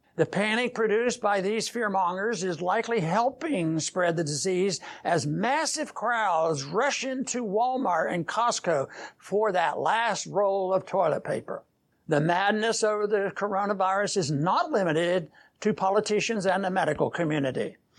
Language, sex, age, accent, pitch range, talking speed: English, male, 60-79, American, 180-235 Hz, 135 wpm